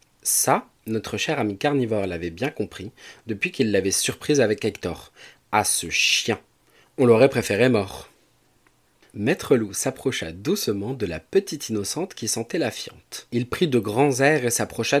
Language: French